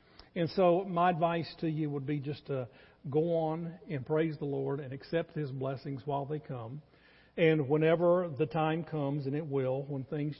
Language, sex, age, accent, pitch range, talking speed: English, male, 50-69, American, 135-160 Hz, 190 wpm